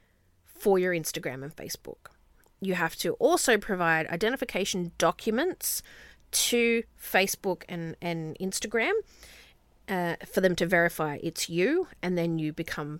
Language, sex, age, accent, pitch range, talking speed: English, female, 30-49, Australian, 165-225 Hz, 130 wpm